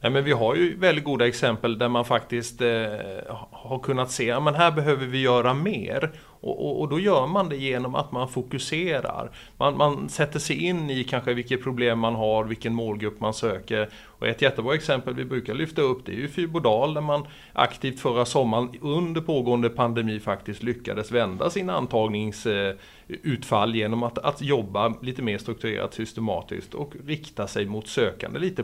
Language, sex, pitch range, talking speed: Swedish, male, 110-140 Hz, 170 wpm